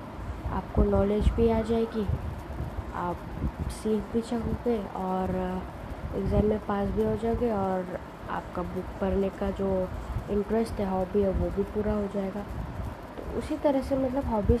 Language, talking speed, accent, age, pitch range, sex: Hindi, 150 wpm, native, 20-39, 185-225 Hz, female